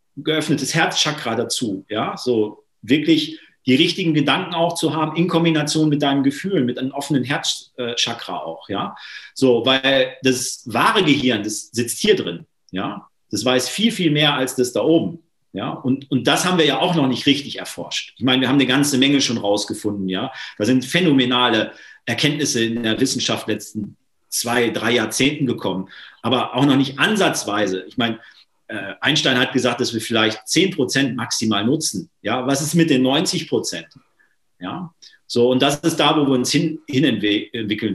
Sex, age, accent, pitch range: male, 40-59, German, 115-145 Hz